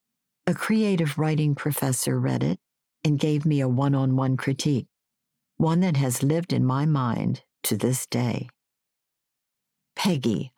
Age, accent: 60-79, American